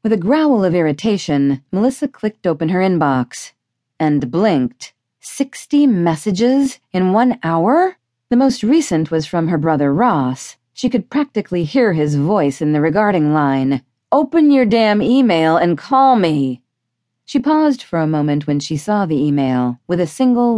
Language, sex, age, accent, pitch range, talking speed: English, female, 40-59, American, 145-240 Hz, 160 wpm